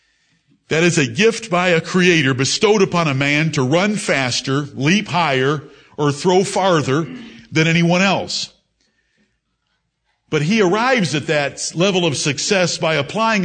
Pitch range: 150-195 Hz